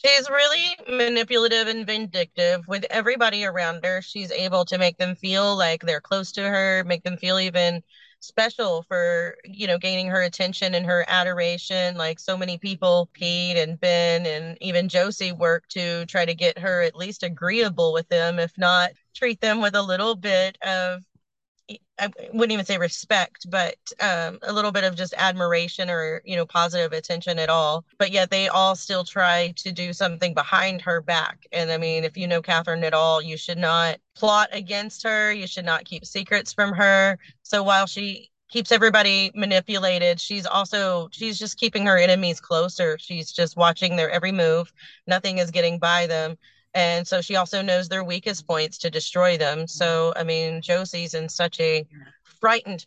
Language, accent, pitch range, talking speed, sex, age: English, American, 170-195 Hz, 185 wpm, female, 30-49